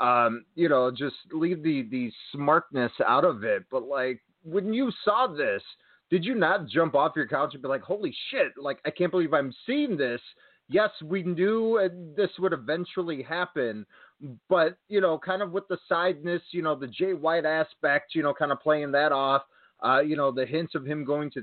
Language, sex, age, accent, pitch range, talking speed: English, male, 30-49, American, 140-185 Hz, 205 wpm